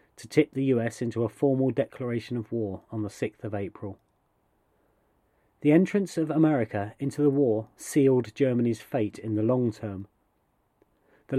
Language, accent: English, British